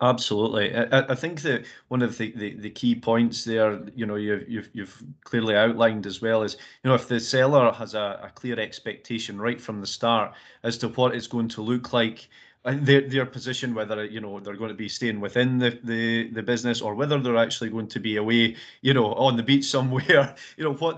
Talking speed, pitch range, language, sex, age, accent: 225 wpm, 105-120 Hz, English, male, 30-49, British